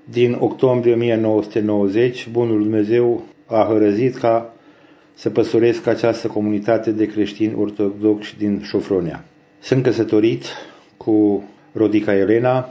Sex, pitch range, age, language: male, 105-120 Hz, 50-69, Romanian